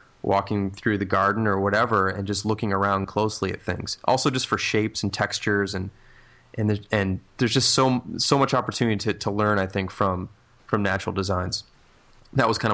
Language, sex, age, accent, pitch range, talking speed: English, male, 30-49, American, 95-110 Hz, 195 wpm